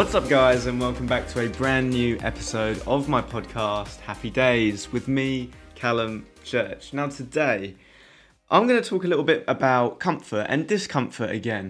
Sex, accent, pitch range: male, British, 110-150 Hz